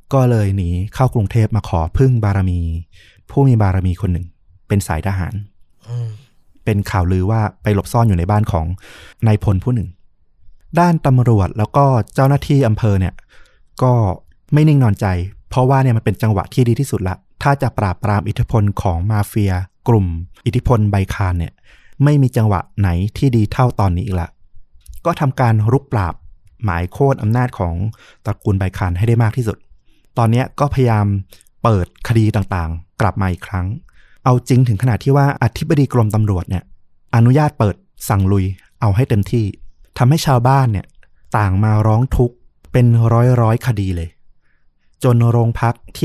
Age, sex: 20-39, male